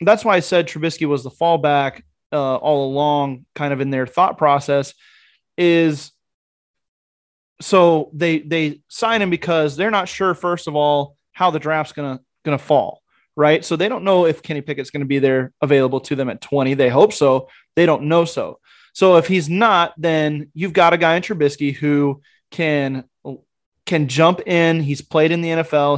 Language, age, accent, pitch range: English, 20-39, American, 145-175 Hz